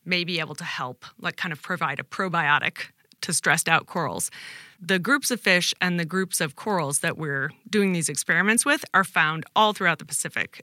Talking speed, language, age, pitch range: 205 wpm, English, 30-49, 155-195 Hz